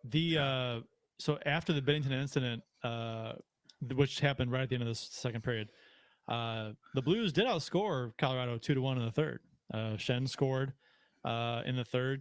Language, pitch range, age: English, 115-145 Hz, 30-49